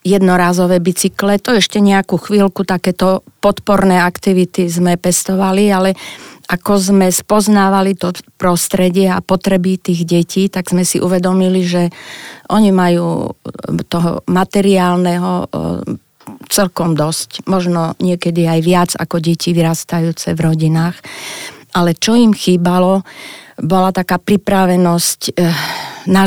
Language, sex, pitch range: Slovak, female, 170-190 Hz